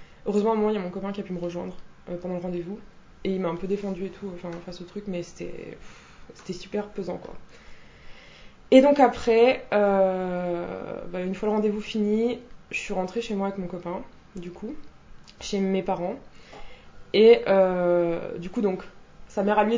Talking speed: 200 wpm